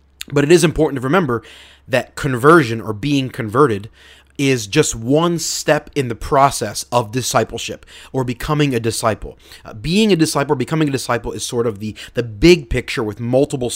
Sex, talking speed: male, 180 wpm